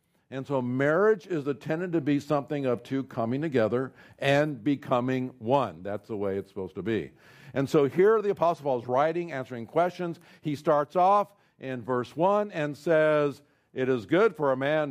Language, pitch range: English, 120-150 Hz